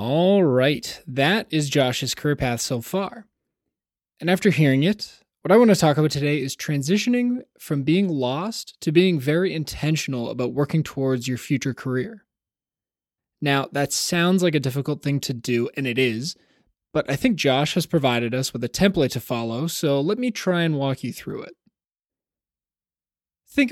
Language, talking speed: English, 175 wpm